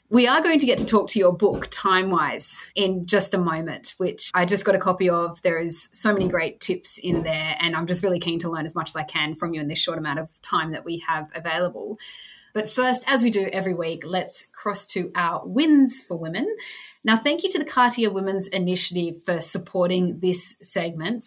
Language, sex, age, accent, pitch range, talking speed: English, female, 20-39, Australian, 175-215 Hz, 225 wpm